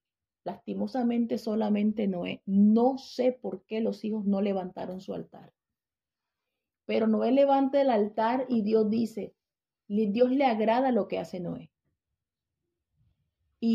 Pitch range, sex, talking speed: 195-235 Hz, female, 125 wpm